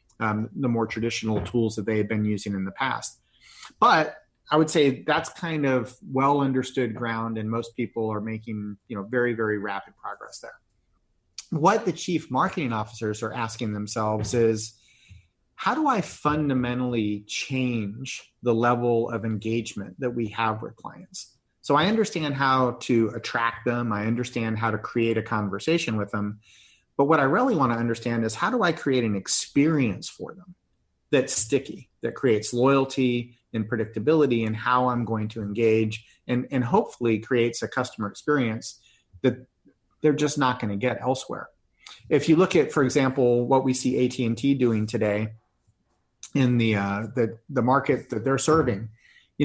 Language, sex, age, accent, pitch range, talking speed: English, male, 30-49, American, 110-130 Hz, 170 wpm